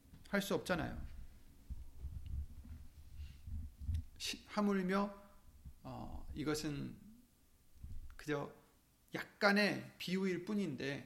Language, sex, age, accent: Korean, male, 40-59, native